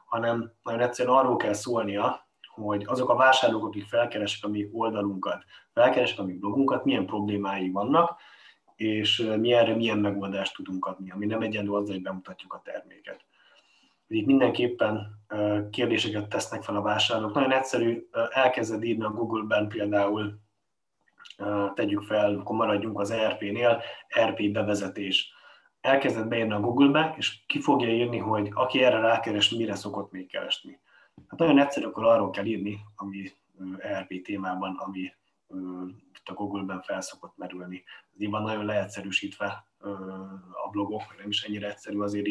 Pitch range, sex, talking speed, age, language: 100-115 Hz, male, 145 wpm, 30-49, Hungarian